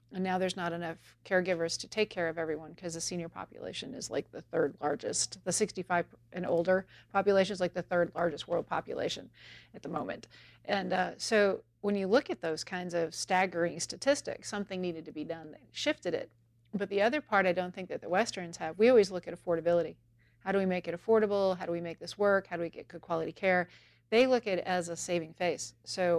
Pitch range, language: 170-200 Hz, English